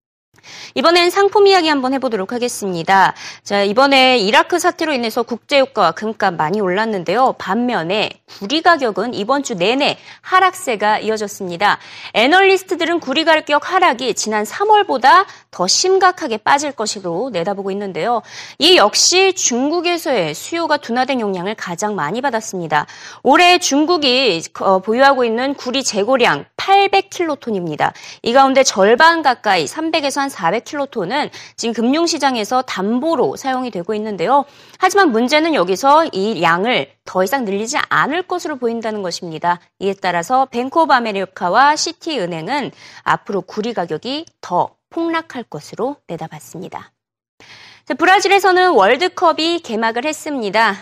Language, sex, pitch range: Korean, female, 210-335 Hz